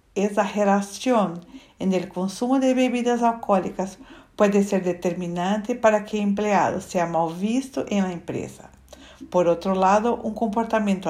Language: Spanish